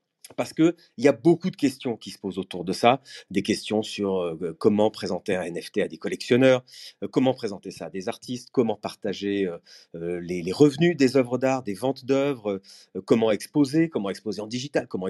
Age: 30-49